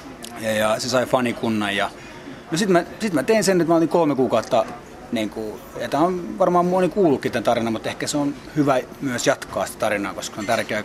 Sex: male